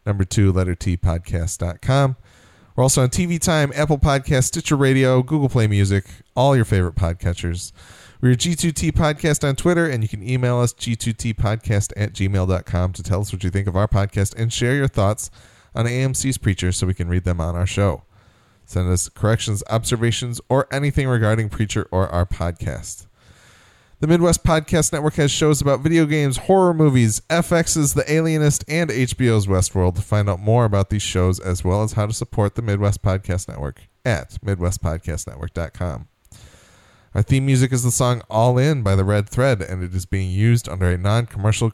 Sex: male